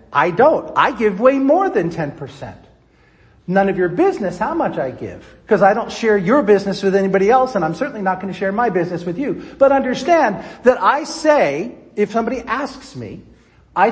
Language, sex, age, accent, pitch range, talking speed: English, male, 50-69, American, 205-280 Hz, 195 wpm